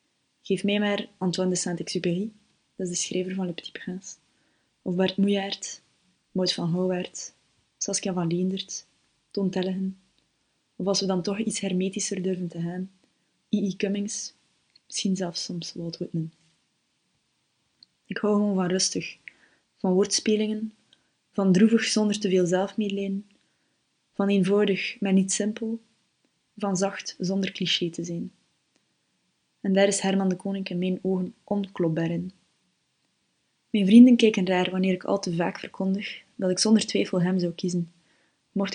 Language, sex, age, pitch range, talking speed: Dutch, female, 20-39, 180-200 Hz, 145 wpm